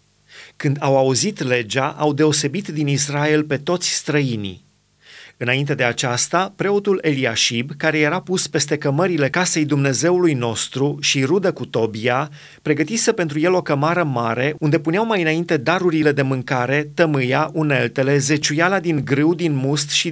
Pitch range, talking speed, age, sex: 140-170 Hz, 145 wpm, 30-49, male